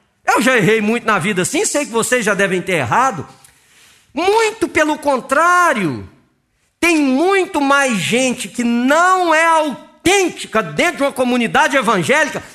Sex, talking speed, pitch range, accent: male, 145 wpm, 205-330 Hz, Brazilian